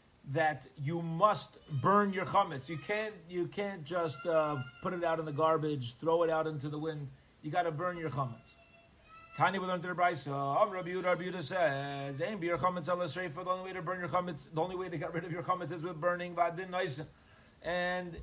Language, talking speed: English, 200 wpm